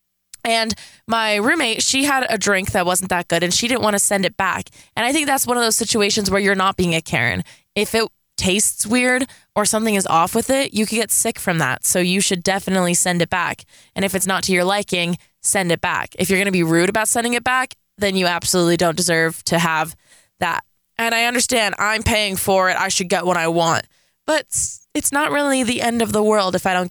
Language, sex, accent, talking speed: English, female, American, 245 wpm